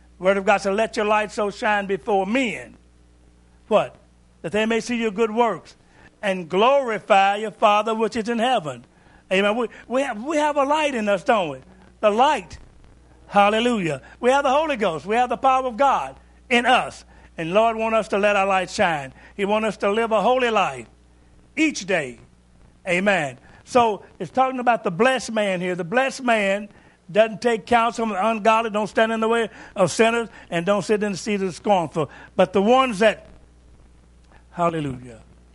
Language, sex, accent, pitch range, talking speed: English, male, American, 135-225 Hz, 185 wpm